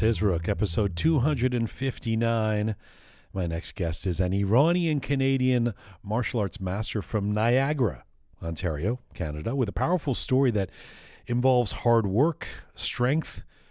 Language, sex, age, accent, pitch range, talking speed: English, male, 40-59, American, 95-125 Hz, 115 wpm